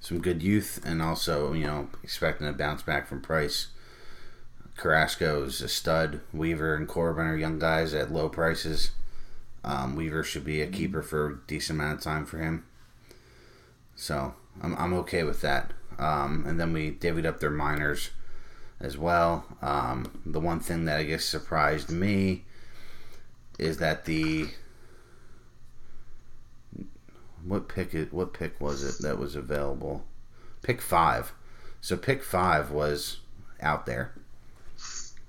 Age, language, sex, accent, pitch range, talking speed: 30-49, English, male, American, 75-90 Hz, 145 wpm